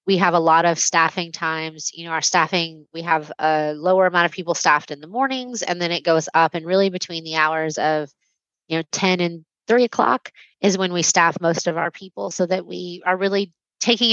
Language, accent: English, American